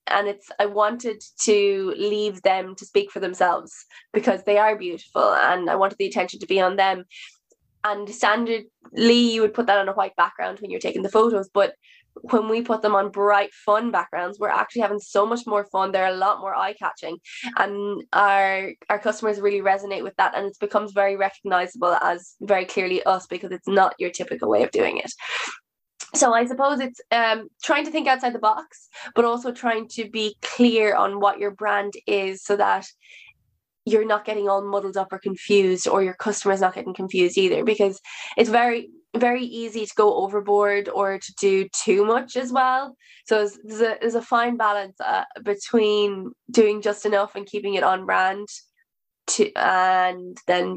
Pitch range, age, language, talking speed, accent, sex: 195-230 Hz, 10-29, English, 190 wpm, Irish, female